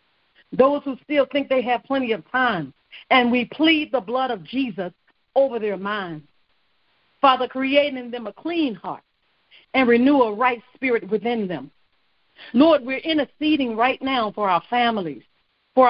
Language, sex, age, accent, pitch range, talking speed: English, female, 50-69, American, 225-280 Hz, 160 wpm